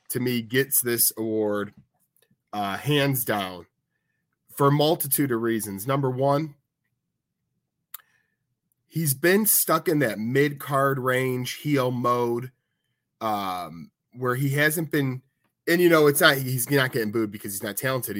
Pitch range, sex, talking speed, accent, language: 105-140 Hz, male, 140 wpm, American, English